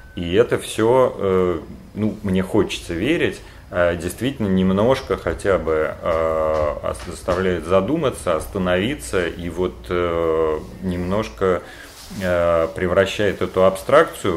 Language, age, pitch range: Russian, 30-49, 85-95 Hz